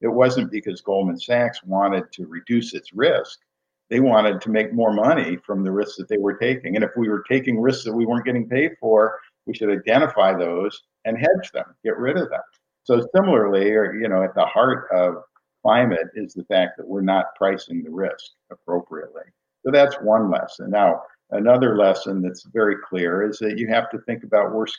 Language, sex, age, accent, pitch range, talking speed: English, male, 50-69, American, 100-125 Hz, 205 wpm